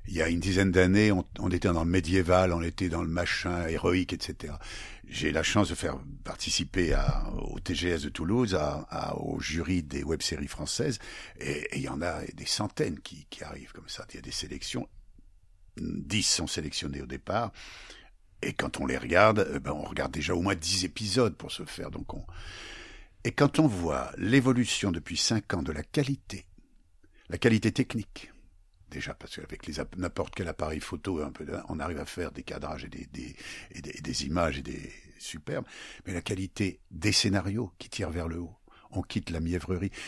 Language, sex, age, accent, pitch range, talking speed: French, male, 60-79, French, 85-105 Hz, 200 wpm